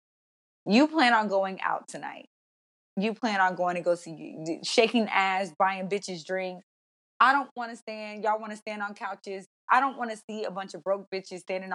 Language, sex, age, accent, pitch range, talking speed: English, female, 20-39, American, 190-235 Hz, 205 wpm